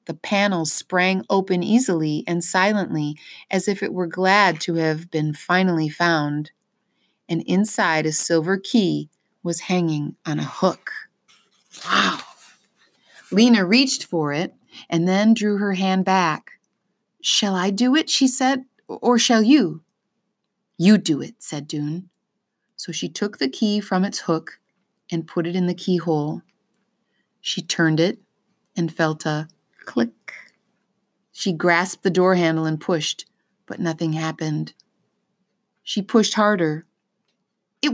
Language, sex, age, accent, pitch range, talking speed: English, female, 30-49, American, 165-220 Hz, 140 wpm